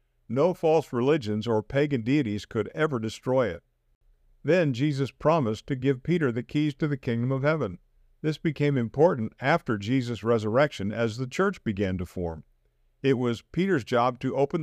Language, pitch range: English, 105-145 Hz